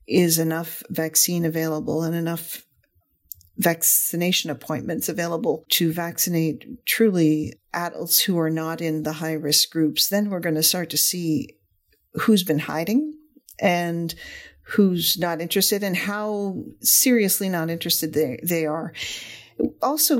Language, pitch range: English, 155-185 Hz